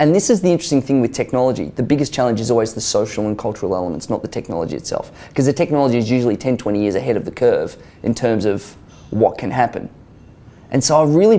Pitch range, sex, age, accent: 110-135 Hz, male, 20-39, Australian